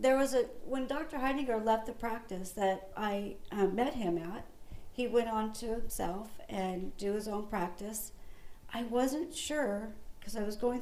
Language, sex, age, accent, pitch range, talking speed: English, female, 60-79, American, 210-265 Hz, 175 wpm